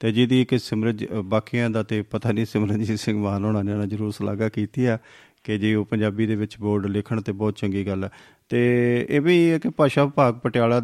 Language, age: Punjabi, 40-59